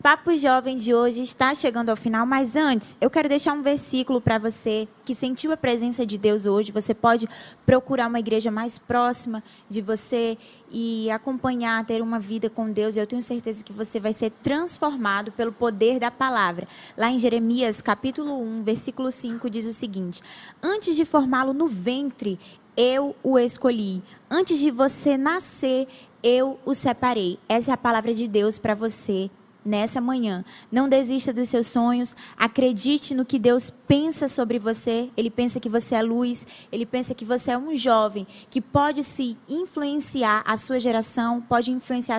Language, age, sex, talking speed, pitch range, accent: Portuguese, 10-29, female, 170 wpm, 225-260 Hz, Brazilian